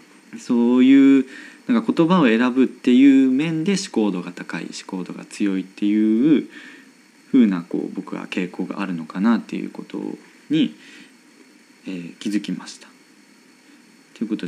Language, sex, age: Japanese, male, 20-39